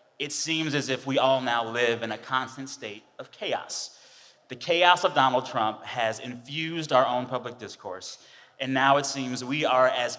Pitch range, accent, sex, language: 120-150 Hz, American, male, English